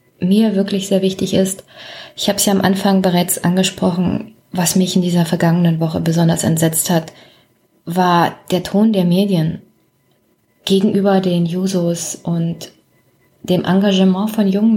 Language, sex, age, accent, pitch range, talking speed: German, female, 20-39, German, 180-220 Hz, 140 wpm